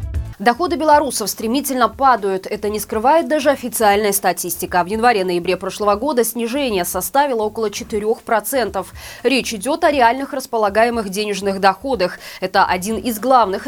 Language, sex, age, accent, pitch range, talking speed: Russian, female, 20-39, native, 195-265 Hz, 125 wpm